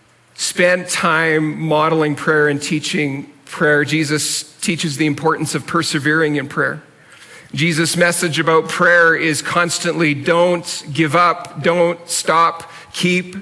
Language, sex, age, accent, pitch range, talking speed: English, male, 50-69, American, 155-175 Hz, 120 wpm